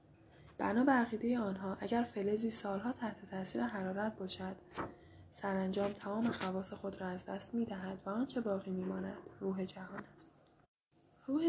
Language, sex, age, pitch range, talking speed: Persian, female, 10-29, 190-240 Hz, 150 wpm